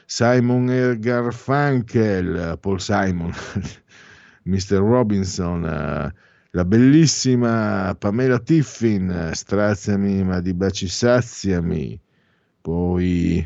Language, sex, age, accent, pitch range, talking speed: Italian, male, 50-69, native, 85-115 Hz, 75 wpm